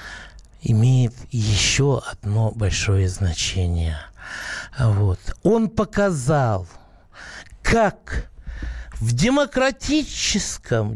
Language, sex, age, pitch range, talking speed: Russian, male, 60-79, 115-175 Hz, 55 wpm